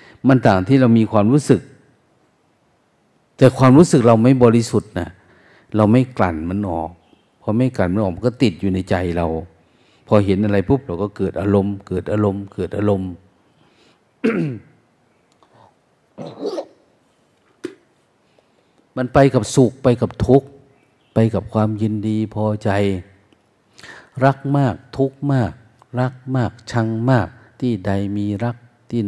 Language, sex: Thai, male